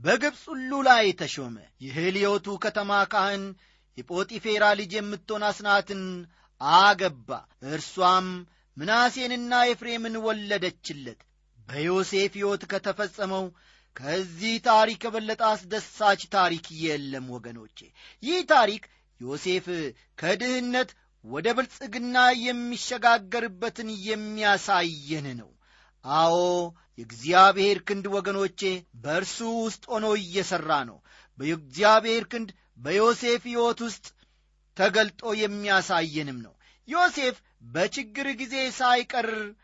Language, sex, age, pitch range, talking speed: Amharic, male, 40-59, 180-225 Hz, 80 wpm